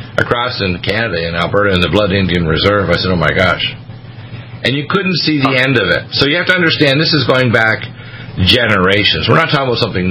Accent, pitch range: American, 105-130 Hz